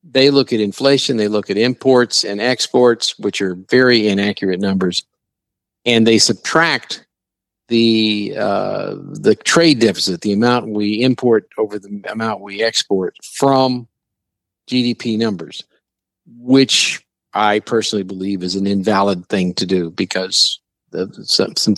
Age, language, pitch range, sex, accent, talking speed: 50-69, English, 100-120 Hz, male, American, 130 wpm